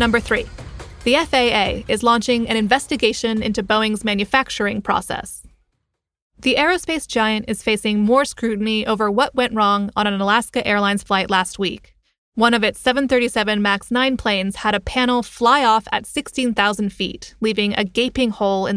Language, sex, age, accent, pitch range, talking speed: English, female, 20-39, American, 205-245 Hz, 160 wpm